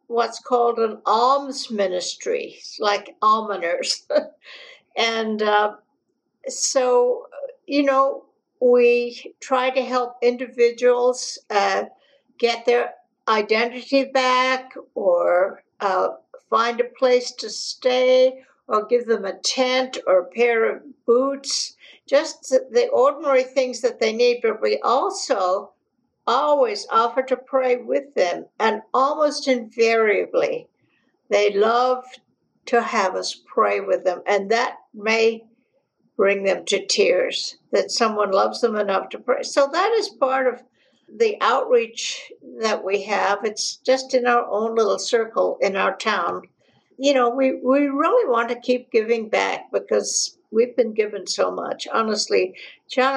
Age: 60-79